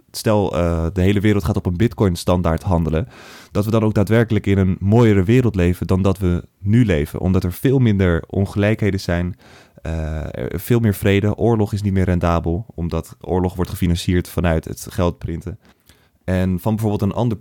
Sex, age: male, 20-39